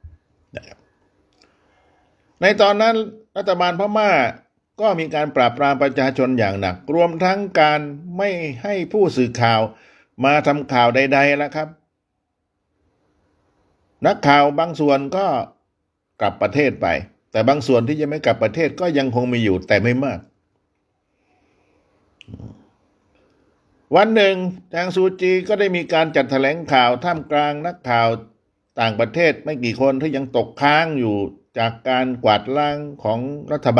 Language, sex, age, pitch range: Thai, male, 60-79, 110-170 Hz